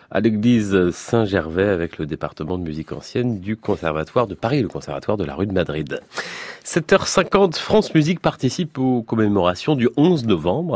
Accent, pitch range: French, 85-125 Hz